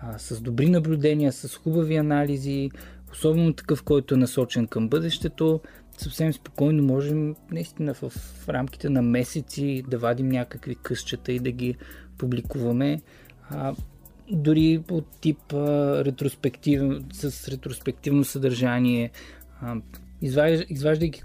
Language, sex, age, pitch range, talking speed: Bulgarian, male, 20-39, 120-150 Hz, 115 wpm